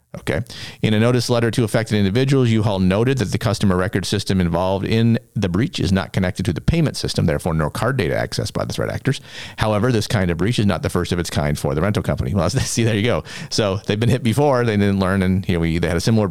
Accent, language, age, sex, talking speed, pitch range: American, English, 40-59, male, 270 wpm, 100-125 Hz